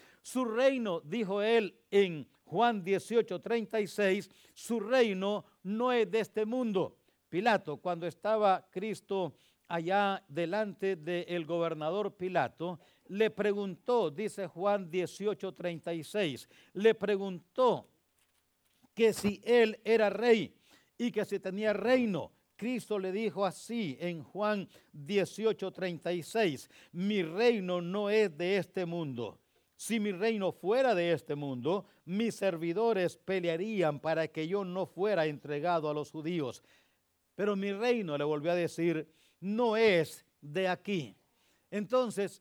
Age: 60-79